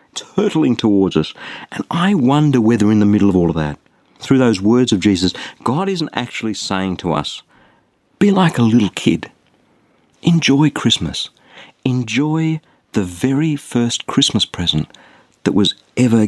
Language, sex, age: English, male, 40-59